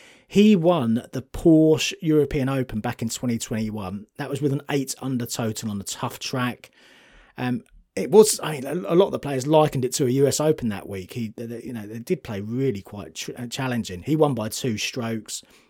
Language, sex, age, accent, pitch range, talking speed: English, male, 30-49, British, 115-155 Hz, 210 wpm